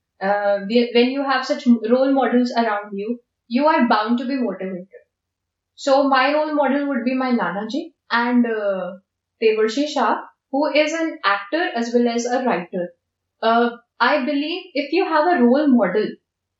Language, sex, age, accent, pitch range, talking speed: English, female, 10-29, Indian, 230-285 Hz, 165 wpm